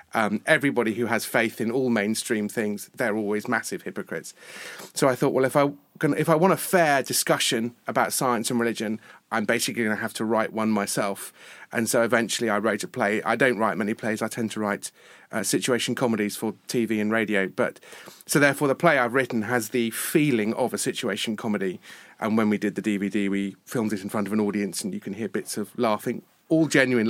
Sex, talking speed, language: male, 220 wpm, English